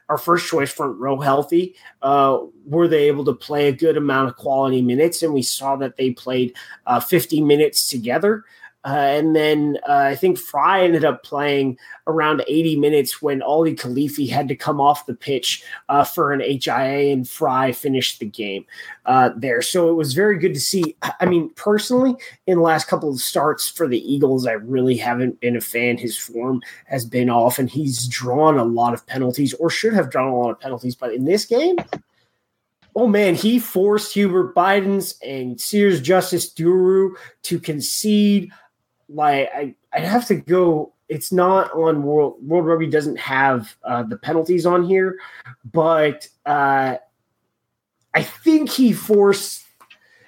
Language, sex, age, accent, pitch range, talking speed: English, male, 30-49, American, 135-175 Hz, 175 wpm